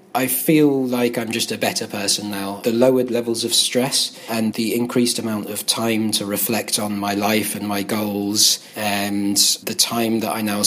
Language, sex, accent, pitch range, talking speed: English, male, British, 105-120 Hz, 190 wpm